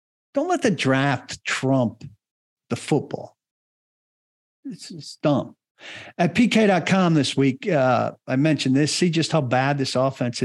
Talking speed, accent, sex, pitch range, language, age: 130 wpm, American, male, 110-140 Hz, English, 50-69